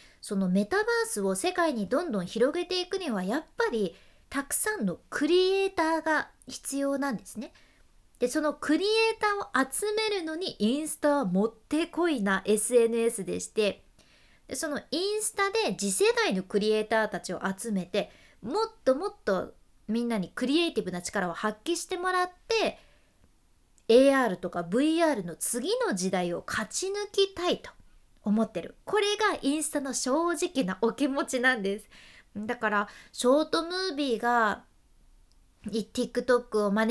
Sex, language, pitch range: female, Japanese, 215-345 Hz